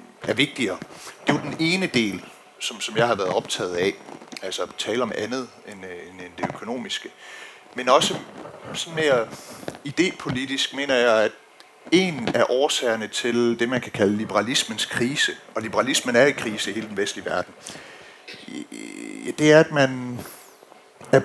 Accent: native